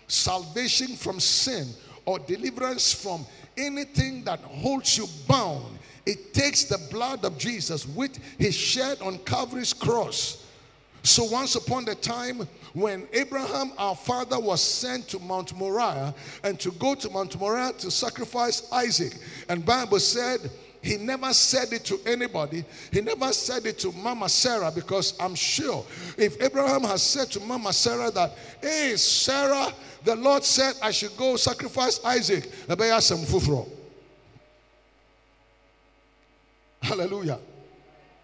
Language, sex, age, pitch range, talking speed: English, male, 50-69, 175-250 Hz, 130 wpm